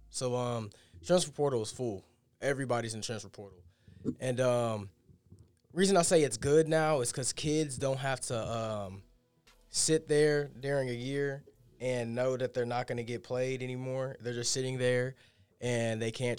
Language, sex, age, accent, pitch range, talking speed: English, male, 20-39, American, 110-130 Hz, 170 wpm